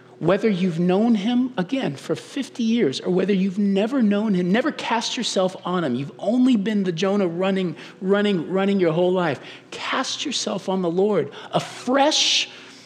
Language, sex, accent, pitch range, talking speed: English, male, American, 125-205 Hz, 170 wpm